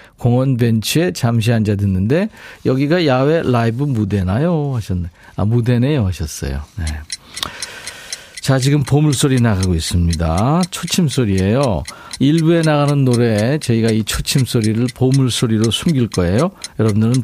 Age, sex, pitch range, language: 50-69, male, 105-145 Hz, Korean